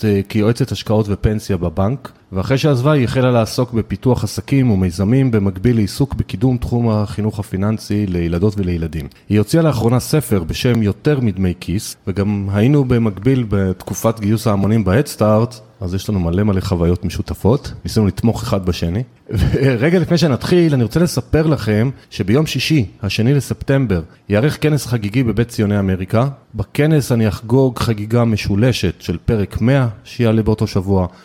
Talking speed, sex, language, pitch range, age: 140 wpm, male, Hebrew, 100-130 Hz, 30-49